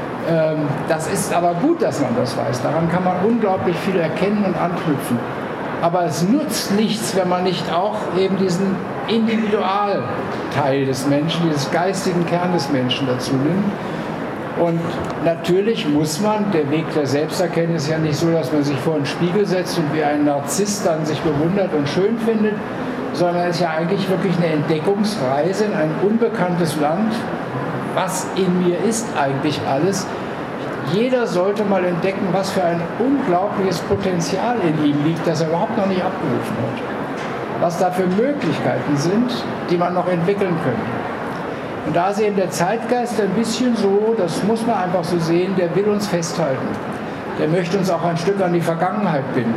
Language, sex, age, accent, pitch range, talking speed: German, male, 60-79, German, 160-200 Hz, 170 wpm